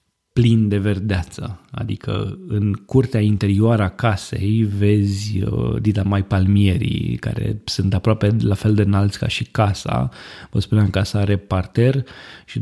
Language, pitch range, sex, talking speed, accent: Romanian, 100-115 Hz, male, 145 wpm, native